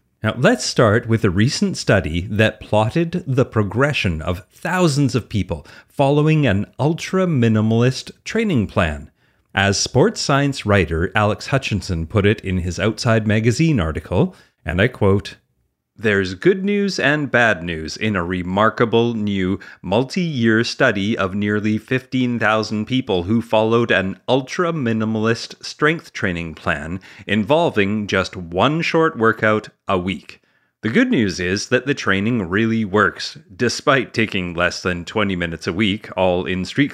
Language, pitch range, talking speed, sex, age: English, 95-130 Hz, 140 wpm, male, 30-49